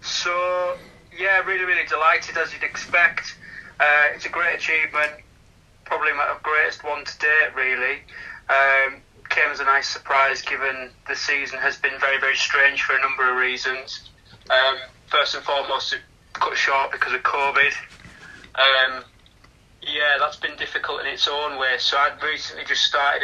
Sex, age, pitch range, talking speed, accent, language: male, 30-49, 130-150 Hz, 165 wpm, British, English